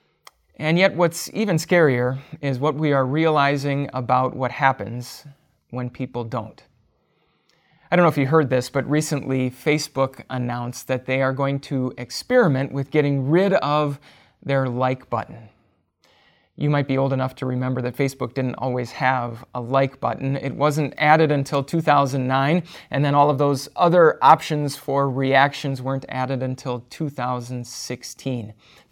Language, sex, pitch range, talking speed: English, male, 130-150 Hz, 150 wpm